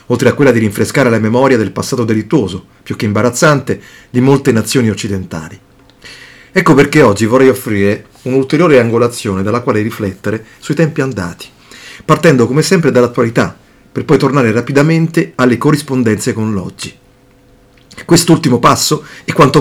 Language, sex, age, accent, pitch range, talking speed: Italian, male, 40-59, native, 110-140 Hz, 140 wpm